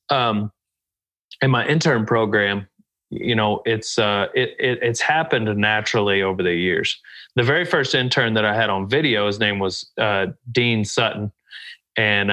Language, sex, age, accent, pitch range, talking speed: English, male, 30-49, American, 105-125 Hz, 165 wpm